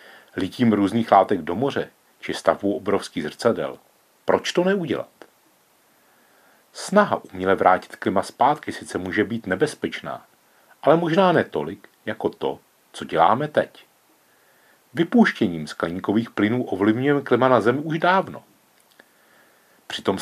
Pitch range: 105-150 Hz